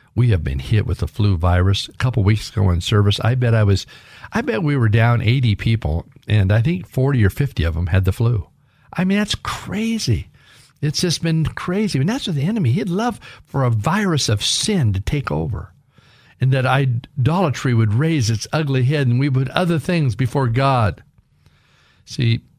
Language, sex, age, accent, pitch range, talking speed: English, male, 50-69, American, 110-150 Hz, 200 wpm